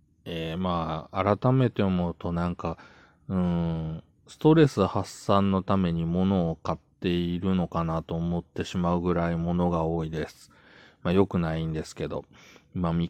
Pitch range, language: 85-95 Hz, Japanese